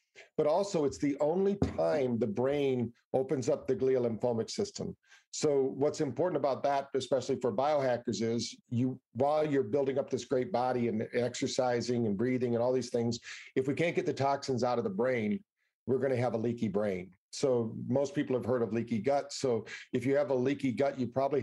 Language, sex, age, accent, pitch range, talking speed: English, male, 50-69, American, 120-140 Hz, 200 wpm